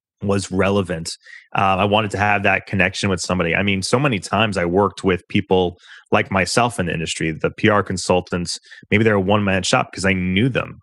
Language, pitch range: English, 90-110 Hz